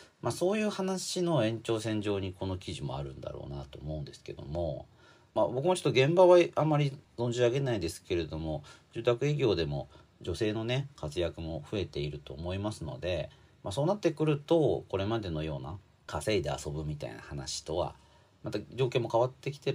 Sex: male